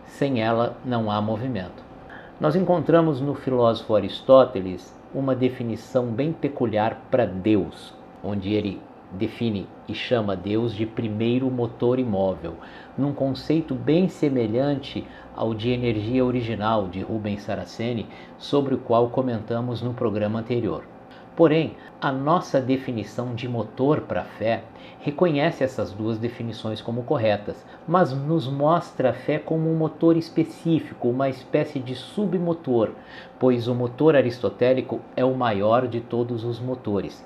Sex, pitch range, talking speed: male, 115-145 Hz, 135 wpm